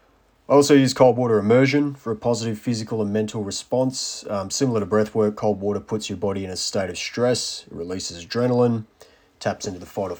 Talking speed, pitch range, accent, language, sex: 210 wpm, 95-120 Hz, Australian, English, male